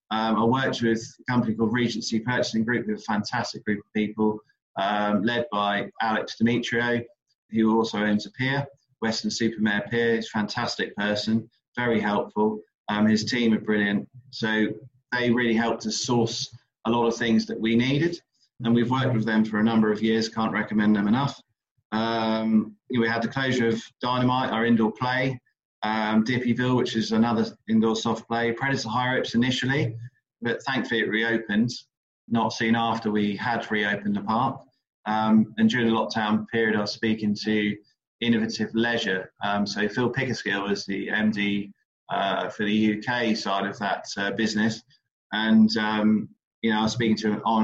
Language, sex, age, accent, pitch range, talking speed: English, male, 30-49, British, 105-120 Hz, 175 wpm